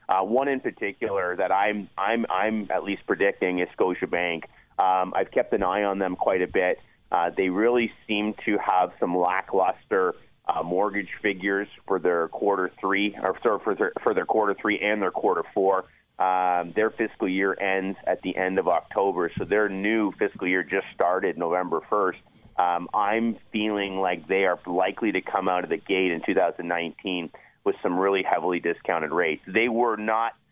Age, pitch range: 30-49, 90-105 Hz